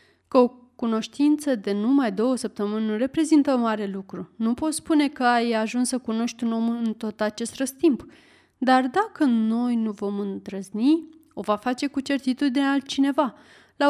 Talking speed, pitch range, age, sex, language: 165 wpm, 220-285 Hz, 30-49, female, Romanian